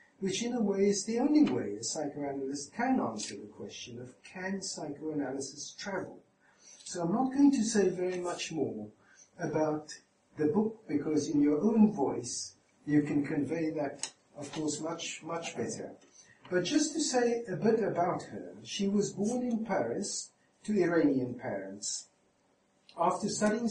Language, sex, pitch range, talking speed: English, male, 135-195 Hz, 155 wpm